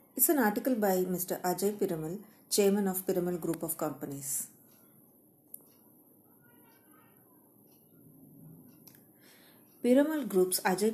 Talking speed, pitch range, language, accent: 90 wpm, 175-215 Hz, Kannada, native